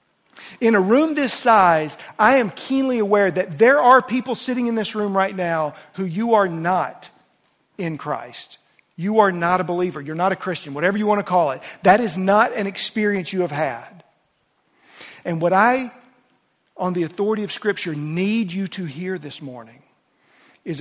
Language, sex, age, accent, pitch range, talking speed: English, male, 50-69, American, 150-205 Hz, 180 wpm